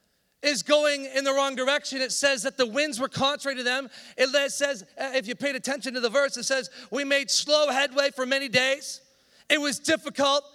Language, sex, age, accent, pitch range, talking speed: English, male, 40-59, American, 245-280 Hz, 205 wpm